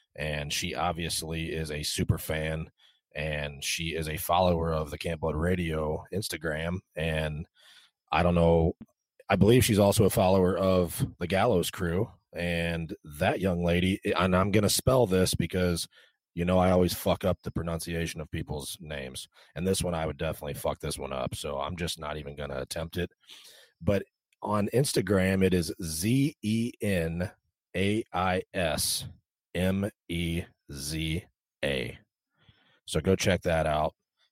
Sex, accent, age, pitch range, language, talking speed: male, American, 30-49, 80-95 Hz, English, 155 wpm